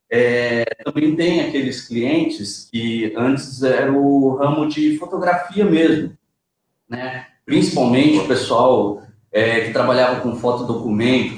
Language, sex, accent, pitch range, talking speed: Portuguese, male, Brazilian, 130-180 Hz, 120 wpm